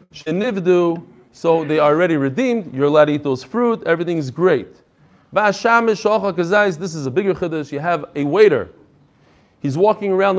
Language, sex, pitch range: English, male, 155-200 Hz